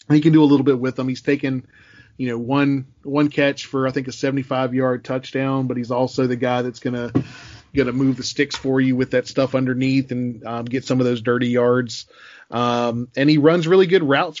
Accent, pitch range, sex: American, 125-140 Hz, male